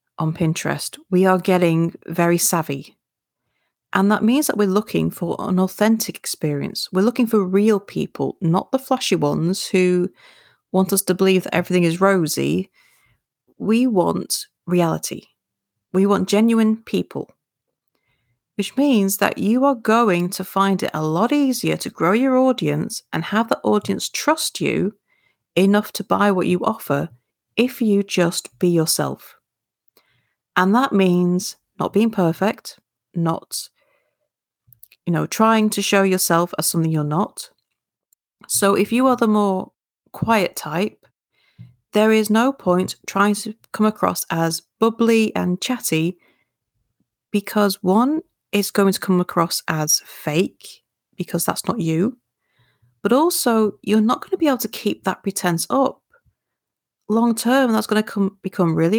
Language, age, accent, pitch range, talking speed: English, 40-59, British, 175-225 Hz, 150 wpm